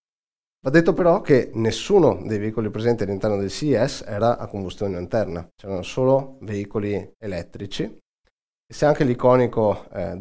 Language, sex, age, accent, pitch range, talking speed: Italian, male, 20-39, native, 95-115 Hz, 140 wpm